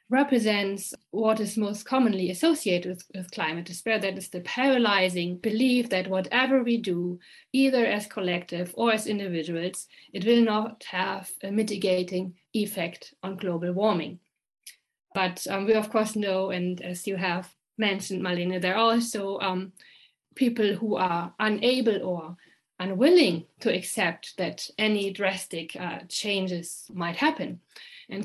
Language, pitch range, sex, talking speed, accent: English, 185-235 Hz, female, 140 wpm, German